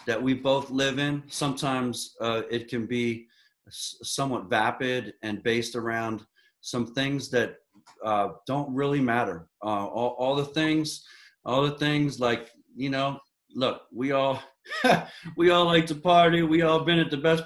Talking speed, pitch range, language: 160 wpm, 125-160 Hz, English